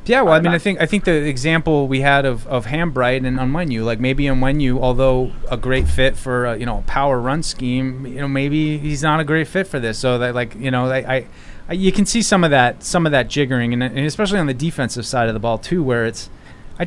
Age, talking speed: 30-49, 265 wpm